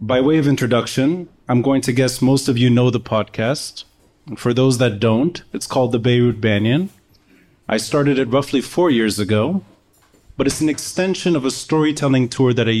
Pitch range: 105-140 Hz